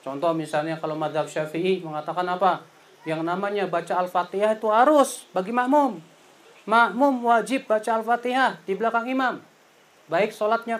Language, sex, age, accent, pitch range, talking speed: Indonesian, male, 30-49, native, 165-250 Hz, 135 wpm